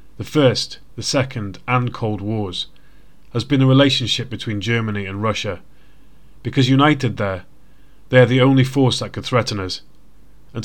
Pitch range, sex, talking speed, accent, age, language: 105-130 Hz, male, 160 wpm, British, 30-49, English